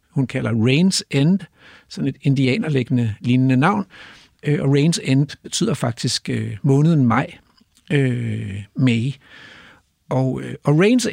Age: 60-79